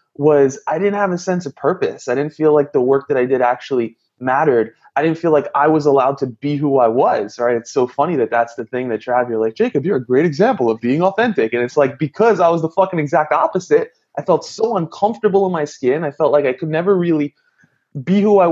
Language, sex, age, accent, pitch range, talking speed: English, male, 20-39, American, 130-185 Hz, 255 wpm